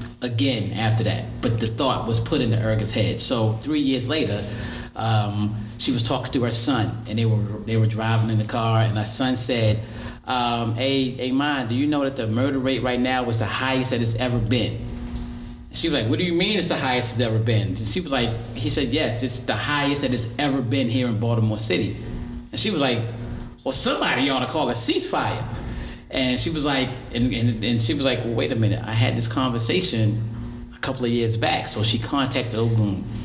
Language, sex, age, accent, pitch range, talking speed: English, male, 30-49, American, 110-125 Hz, 225 wpm